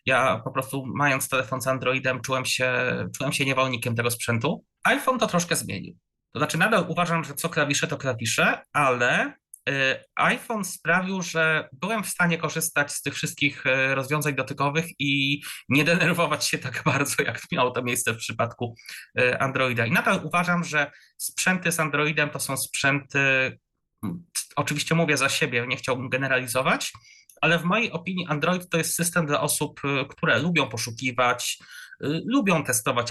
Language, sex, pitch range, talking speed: Polish, male, 130-170 Hz, 150 wpm